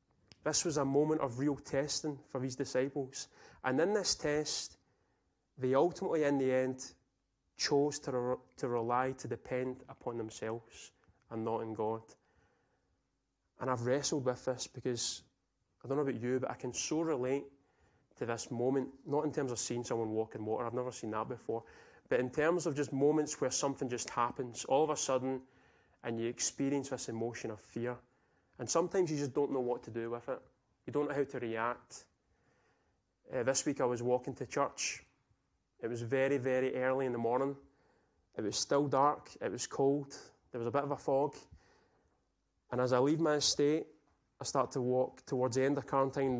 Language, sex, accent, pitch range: English, male, British, 120-145 Hz